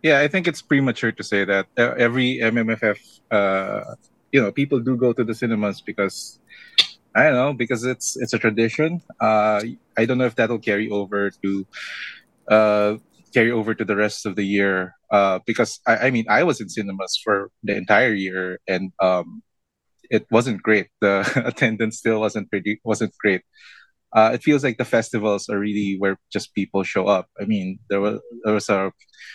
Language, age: English, 20-39